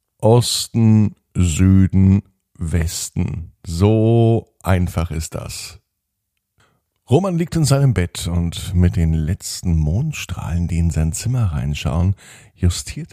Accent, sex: German, male